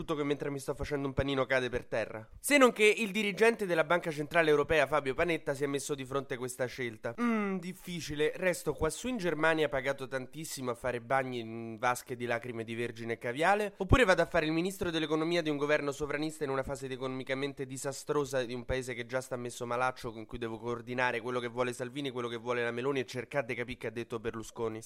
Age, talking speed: 20-39, 225 wpm